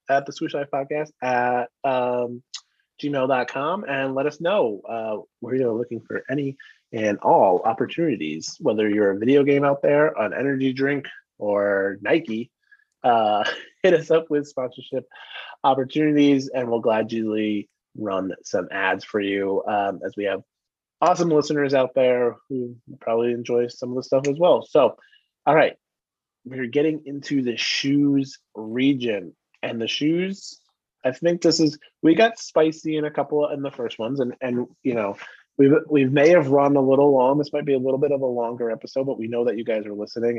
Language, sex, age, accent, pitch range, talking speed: English, male, 20-39, American, 120-145 Hz, 185 wpm